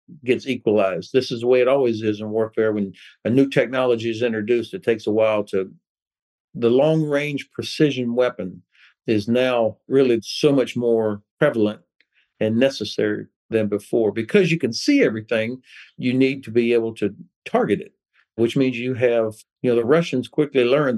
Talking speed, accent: 170 wpm, American